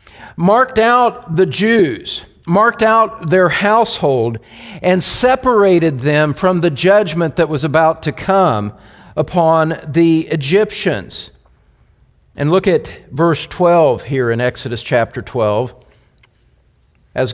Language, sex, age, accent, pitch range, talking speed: English, male, 50-69, American, 150-205 Hz, 115 wpm